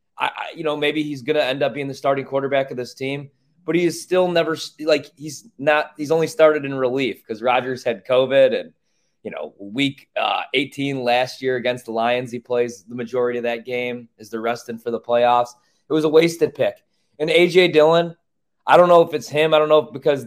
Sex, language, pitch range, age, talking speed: male, English, 120-155 Hz, 20-39, 230 wpm